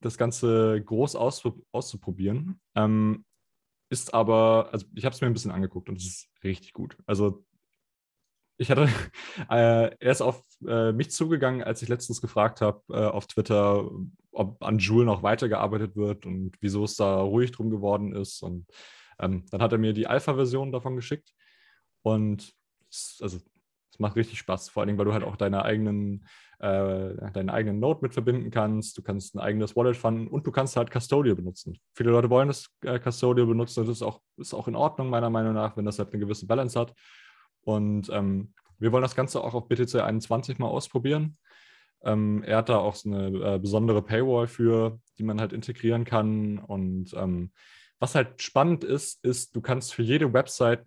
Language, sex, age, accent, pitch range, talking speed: German, male, 20-39, German, 105-125 Hz, 190 wpm